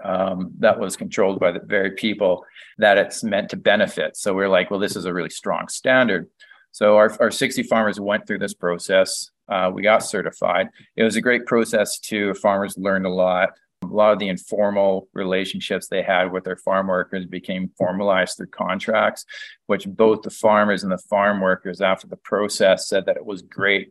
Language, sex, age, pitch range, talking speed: English, male, 40-59, 95-110 Hz, 195 wpm